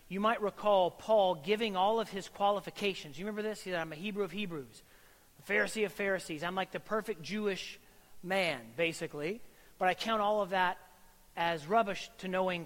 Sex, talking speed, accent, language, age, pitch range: male, 190 wpm, American, English, 40-59, 160-210 Hz